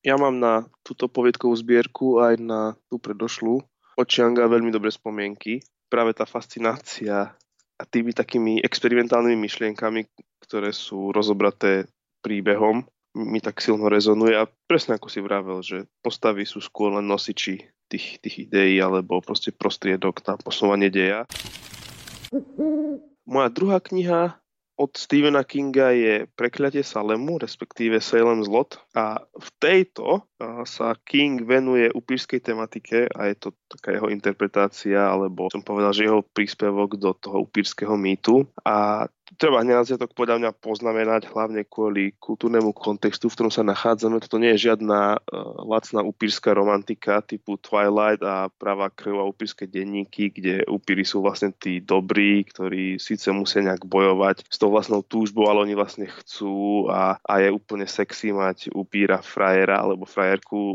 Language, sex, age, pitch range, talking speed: Slovak, male, 20-39, 100-115 Hz, 145 wpm